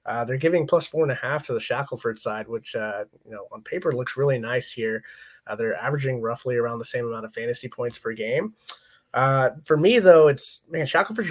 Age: 20-39